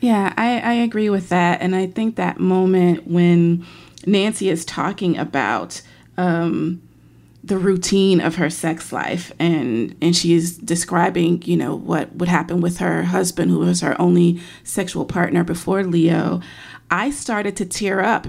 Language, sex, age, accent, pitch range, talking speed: English, female, 30-49, American, 175-220 Hz, 160 wpm